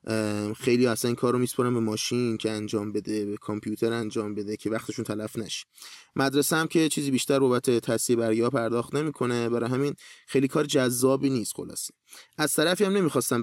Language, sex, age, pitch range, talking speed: Persian, male, 30-49, 110-135 Hz, 175 wpm